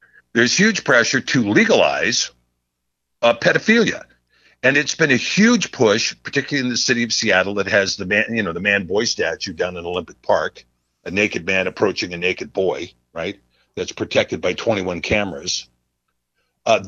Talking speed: 165 wpm